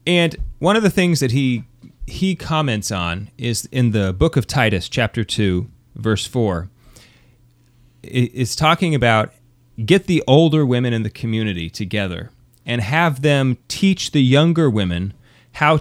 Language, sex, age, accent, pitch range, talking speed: English, male, 30-49, American, 115-145 Hz, 150 wpm